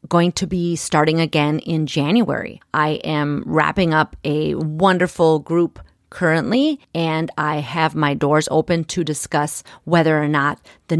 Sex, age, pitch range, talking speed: female, 30-49, 150-185 Hz, 145 wpm